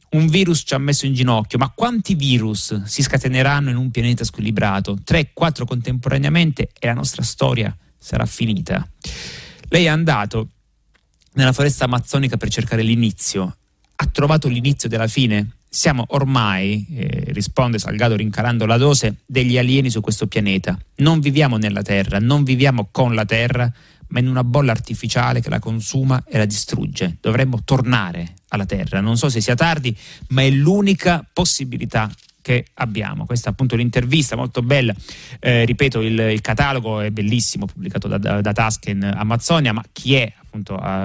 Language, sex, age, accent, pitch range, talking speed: Italian, male, 30-49, native, 105-135 Hz, 160 wpm